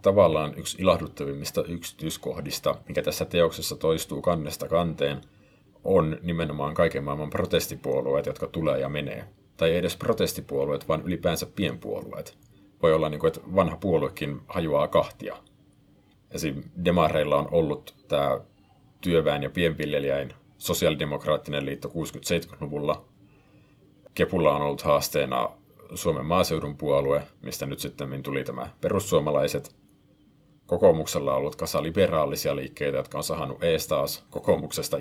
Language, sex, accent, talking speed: Finnish, male, native, 120 wpm